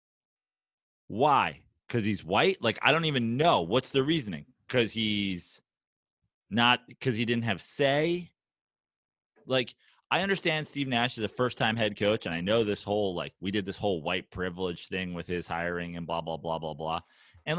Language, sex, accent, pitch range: English, male, American, 105-150 Hz